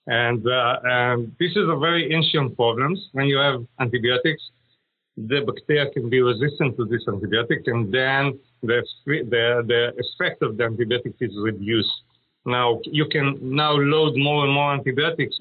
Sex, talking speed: male, 155 wpm